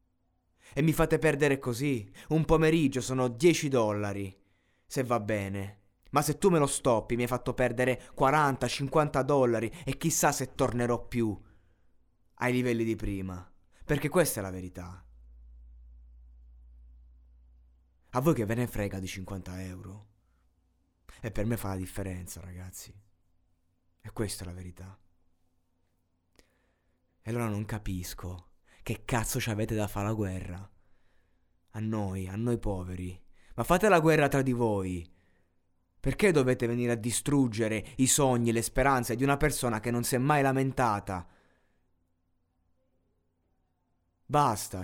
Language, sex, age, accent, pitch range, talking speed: Italian, male, 20-39, native, 90-130 Hz, 140 wpm